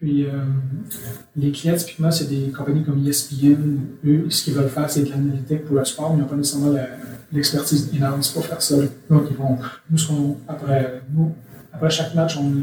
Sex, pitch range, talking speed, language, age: male, 130-145 Hz, 200 wpm, French, 30-49